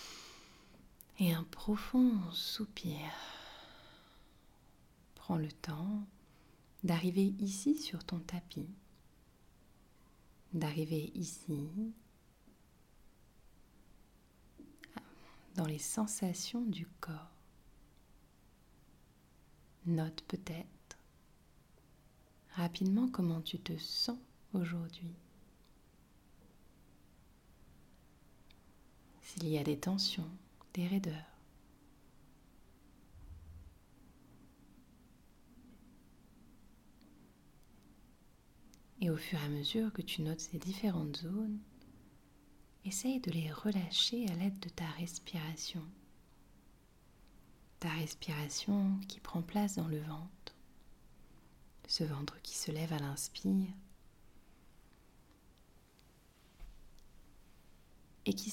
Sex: female